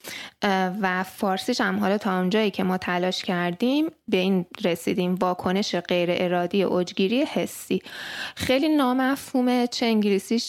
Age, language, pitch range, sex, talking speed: 20-39, Persian, 185-230 Hz, female, 125 wpm